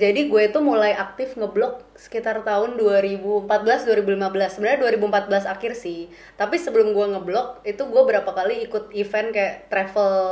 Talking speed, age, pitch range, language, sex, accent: 145 wpm, 20-39, 190-225 Hz, Indonesian, female, native